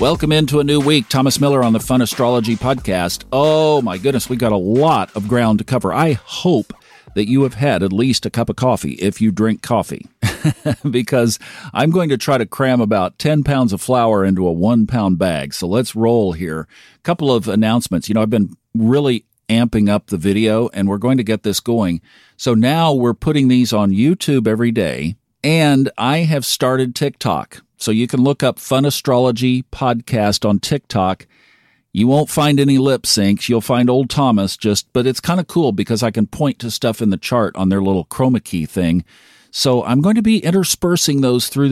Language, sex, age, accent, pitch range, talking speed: English, male, 50-69, American, 105-135 Hz, 205 wpm